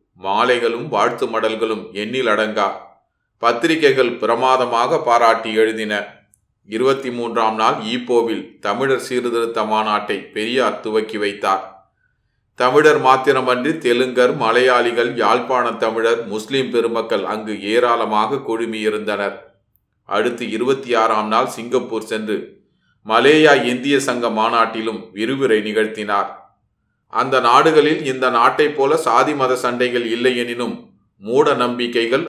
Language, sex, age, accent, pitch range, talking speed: Tamil, male, 30-49, native, 110-130 Hz, 100 wpm